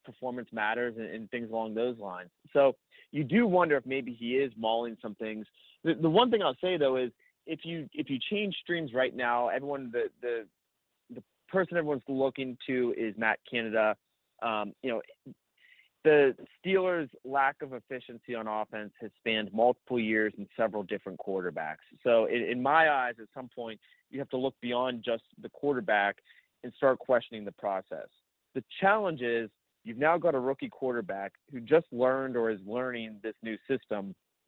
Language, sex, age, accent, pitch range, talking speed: English, male, 30-49, American, 110-145 Hz, 180 wpm